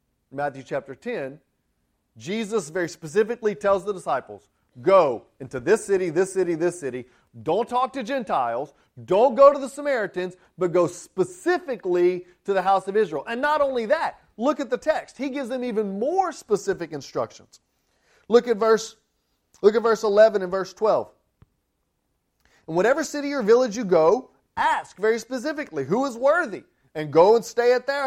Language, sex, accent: English, male, American